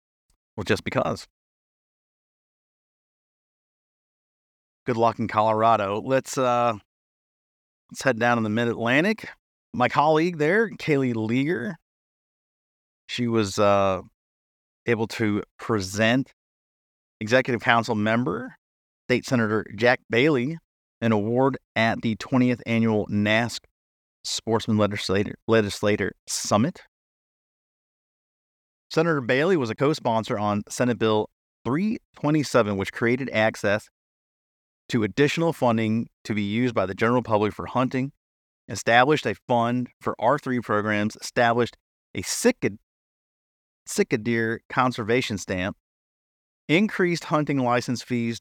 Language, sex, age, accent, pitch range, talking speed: English, male, 30-49, American, 105-130 Hz, 105 wpm